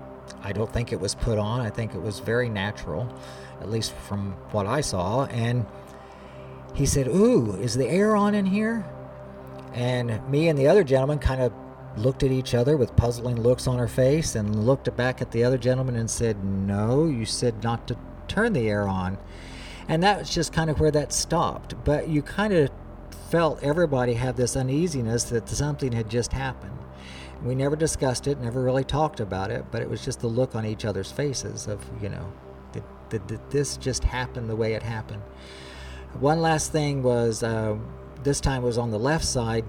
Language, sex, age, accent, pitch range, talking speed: English, male, 50-69, American, 100-130 Hz, 200 wpm